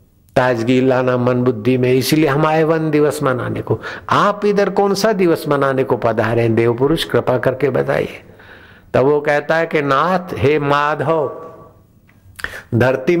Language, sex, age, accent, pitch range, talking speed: Hindi, male, 60-79, native, 120-160 Hz, 155 wpm